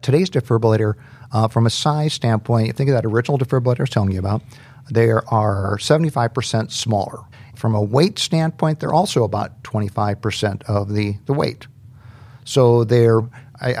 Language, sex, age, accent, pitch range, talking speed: English, male, 50-69, American, 105-125 Hz, 170 wpm